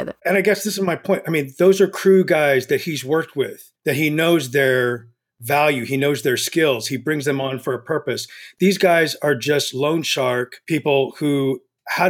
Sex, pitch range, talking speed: male, 140-175 Hz, 210 wpm